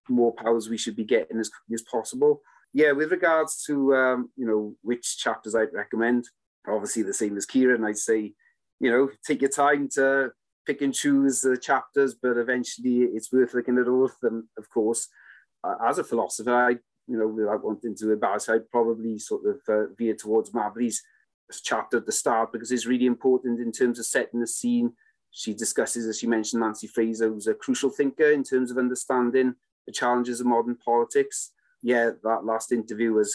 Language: English